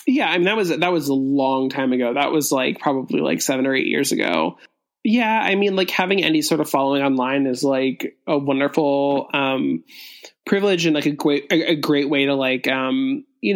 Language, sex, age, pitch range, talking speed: English, male, 20-39, 140-180 Hz, 215 wpm